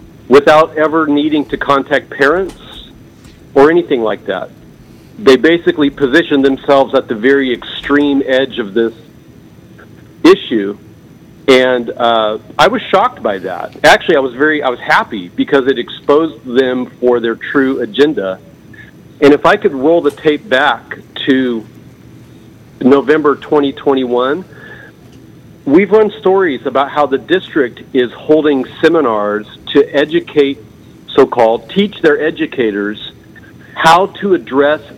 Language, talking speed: English, 125 wpm